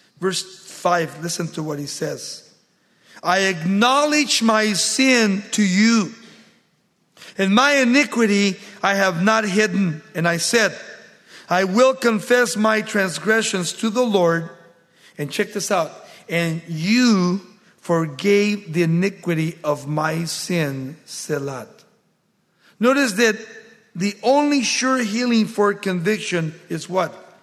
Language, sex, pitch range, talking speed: English, male, 170-215 Hz, 120 wpm